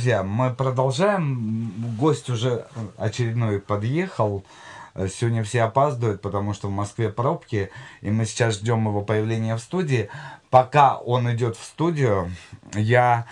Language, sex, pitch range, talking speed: Russian, male, 105-130 Hz, 130 wpm